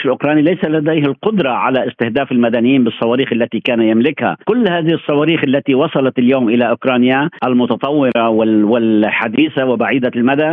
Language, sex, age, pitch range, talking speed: Arabic, male, 50-69, 125-155 Hz, 130 wpm